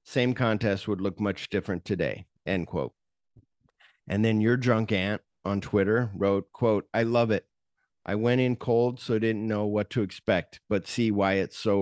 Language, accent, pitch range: English, American, 95-110 Hz